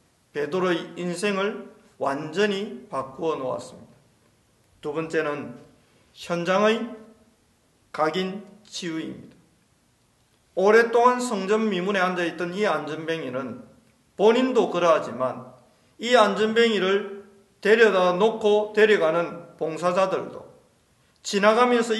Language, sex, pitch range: Korean, male, 155-215 Hz